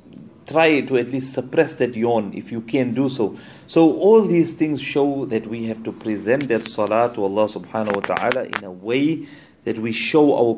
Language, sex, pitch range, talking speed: English, male, 110-135 Hz, 205 wpm